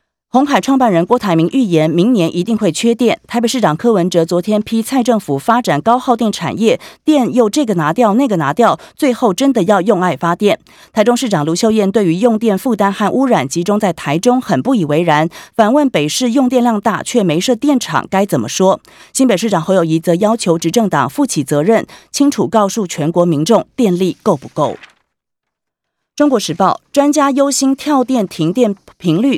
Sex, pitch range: female, 175-245 Hz